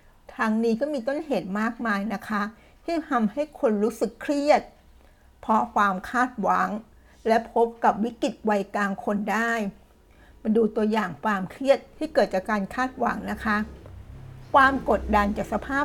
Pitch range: 205-250 Hz